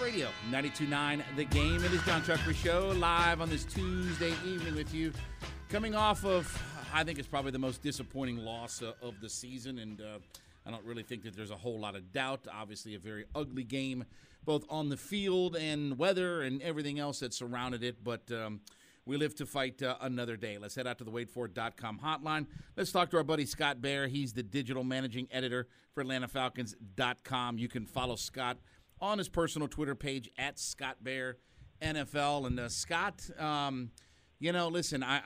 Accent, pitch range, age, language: American, 120-150 Hz, 50-69, English